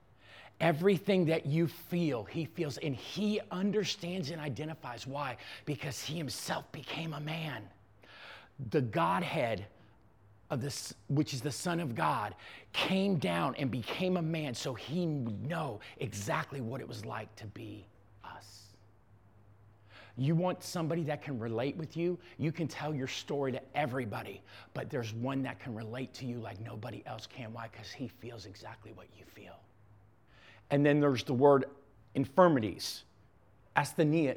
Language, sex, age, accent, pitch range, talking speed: English, male, 40-59, American, 110-145 Hz, 155 wpm